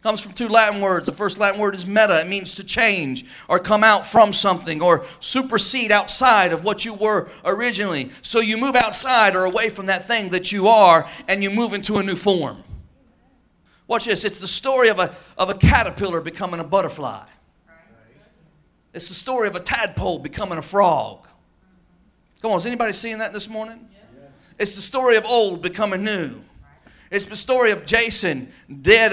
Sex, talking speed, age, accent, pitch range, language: male, 185 wpm, 40-59, American, 185-225 Hz, English